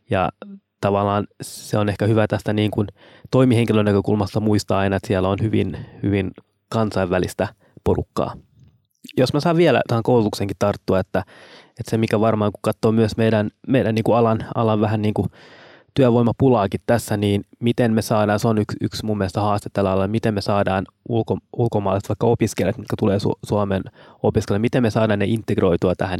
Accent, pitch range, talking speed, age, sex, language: native, 100-115 Hz, 160 wpm, 20-39, male, Finnish